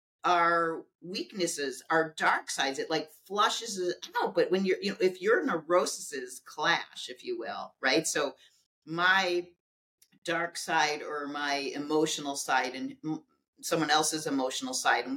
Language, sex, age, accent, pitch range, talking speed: English, female, 40-59, American, 150-195 Hz, 140 wpm